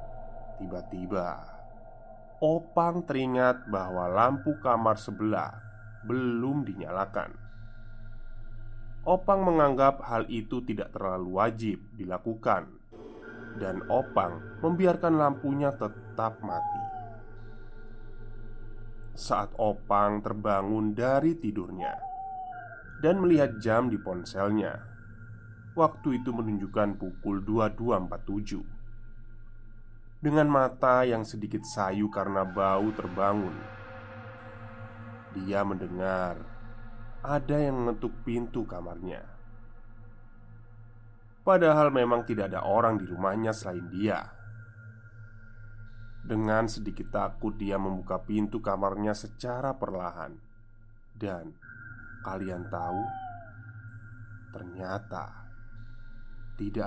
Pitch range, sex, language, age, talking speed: 105-120 Hz, male, Indonesian, 20-39, 80 wpm